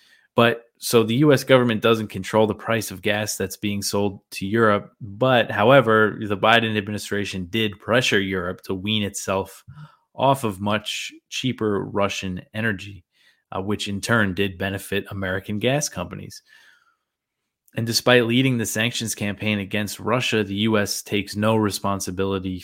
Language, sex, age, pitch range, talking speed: English, male, 20-39, 95-115 Hz, 145 wpm